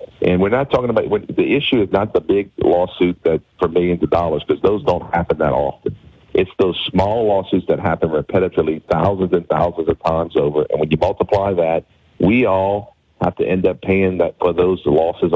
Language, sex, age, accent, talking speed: English, male, 40-59, American, 205 wpm